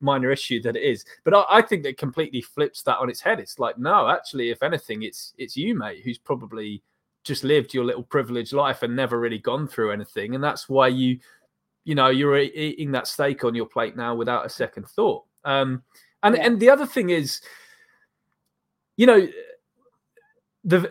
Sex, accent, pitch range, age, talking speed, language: male, British, 125-185 Hz, 20-39, 195 wpm, English